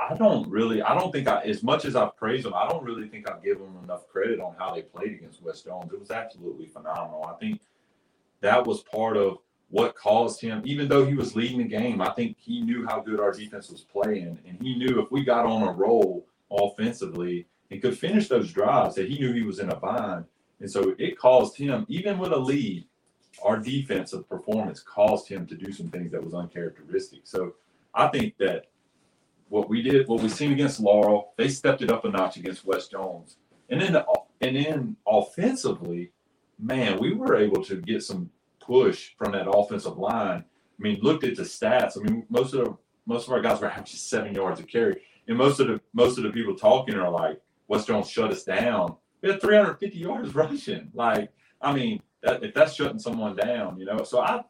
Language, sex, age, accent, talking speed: English, male, 30-49, American, 220 wpm